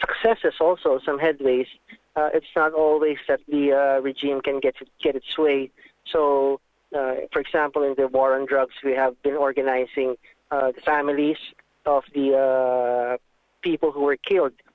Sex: male